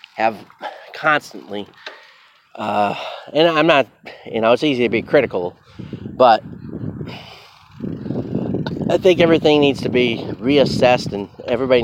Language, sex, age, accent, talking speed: English, male, 30-49, American, 115 wpm